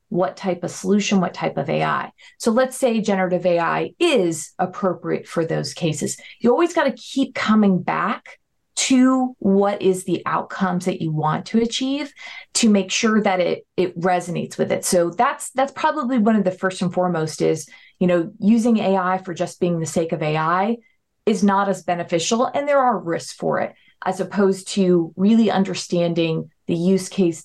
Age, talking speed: 30-49, 180 wpm